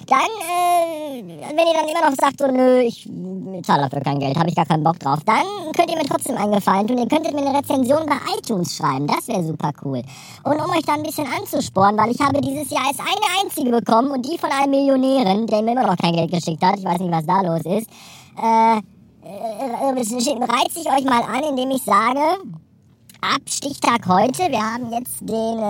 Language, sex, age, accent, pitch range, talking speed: German, male, 20-39, German, 190-300 Hz, 215 wpm